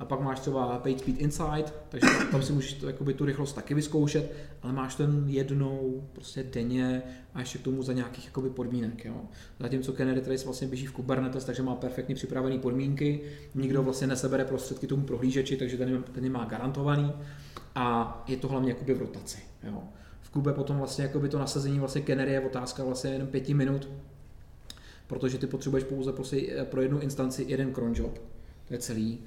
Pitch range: 125-135 Hz